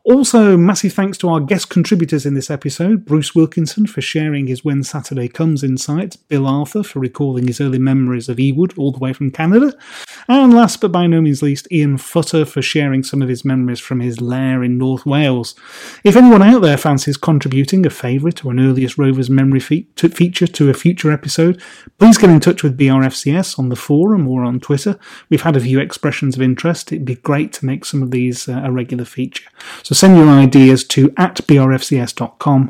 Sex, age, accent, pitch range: male, 30-49, British, 130-175 Hz